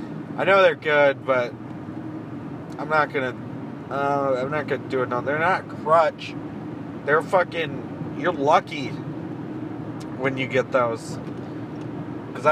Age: 40-59